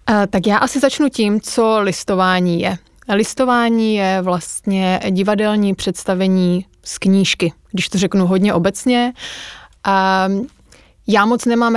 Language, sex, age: Czech, female, 20-39